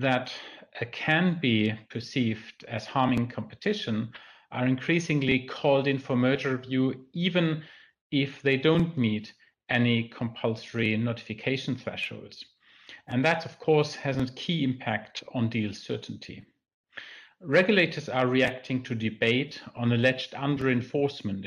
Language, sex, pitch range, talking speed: English, male, 115-140 Hz, 120 wpm